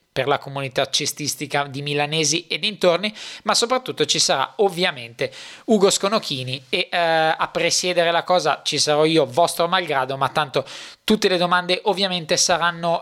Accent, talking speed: native, 150 wpm